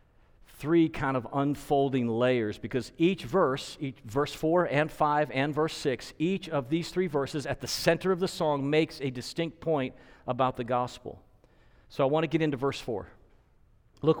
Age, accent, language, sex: 50-69, American, English, male